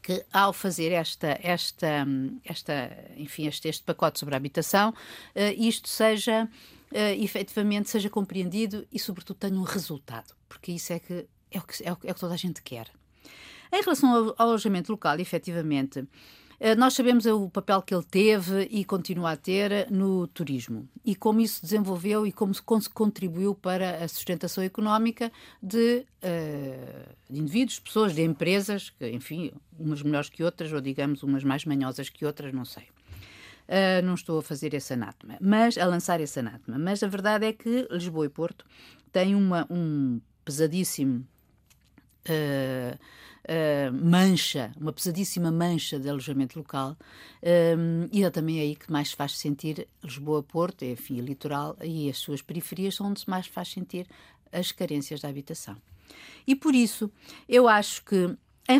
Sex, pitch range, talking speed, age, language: female, 145-200 Hz, 165 wpm, 50-69, Portuguese